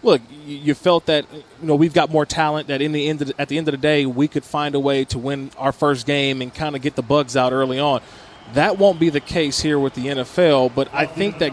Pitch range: 140-165 Hz